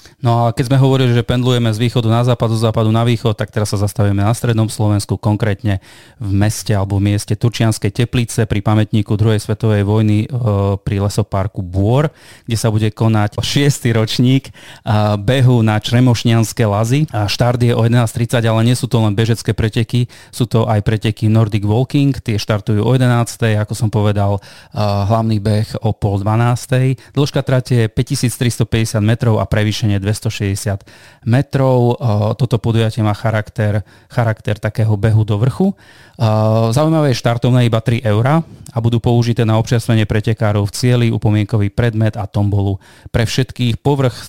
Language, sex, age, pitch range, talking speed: Slovak, male, 30-49, 105-120 Hz, 155 wpm